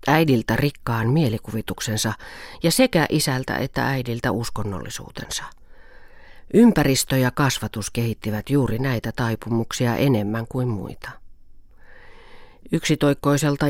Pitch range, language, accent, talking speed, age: 105-135 Hz, Finnish, native, 90 wpm, 40-59